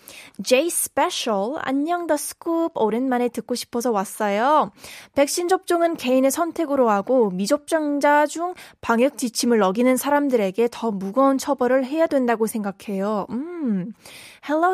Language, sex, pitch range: Korean, female, 230-295 Hz